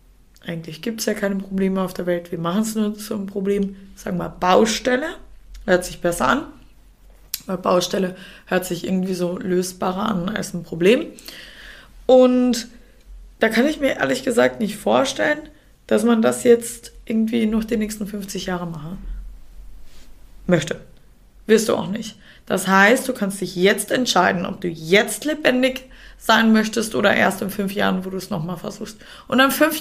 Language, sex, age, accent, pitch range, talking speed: German, female, 20-39, German, 190-230 Hz, 175 wpm